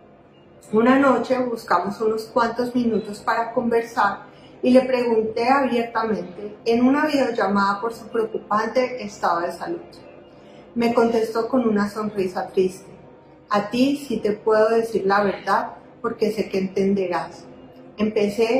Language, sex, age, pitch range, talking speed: Spanish, female, 30-49, 205-245 Hz, 130 wpm